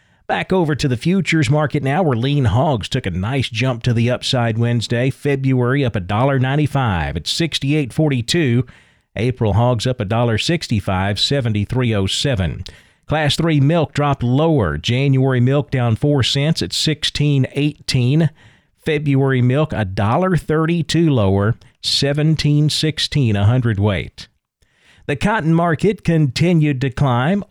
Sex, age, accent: male, 40-59, American